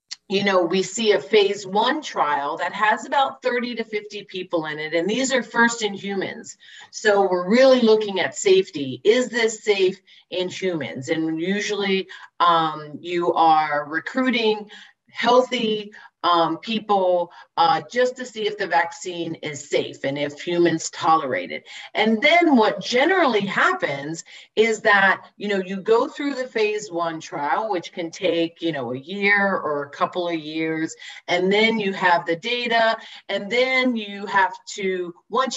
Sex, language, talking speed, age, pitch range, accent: female, English, 165 wpm, 40-59, 170-225 Hz, American